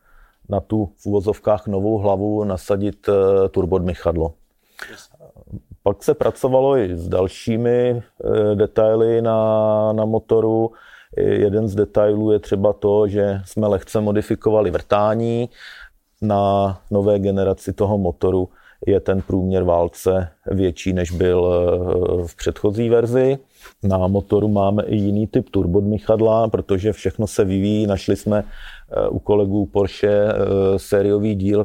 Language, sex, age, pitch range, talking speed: Czech, male, 40-59, 90-105 Hz, 120 wpm